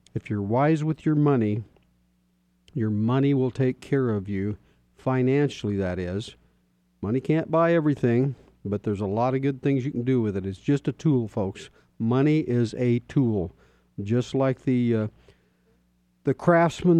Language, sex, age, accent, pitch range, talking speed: English, male, 50-69, American, 105-135 Hz, 165 wpm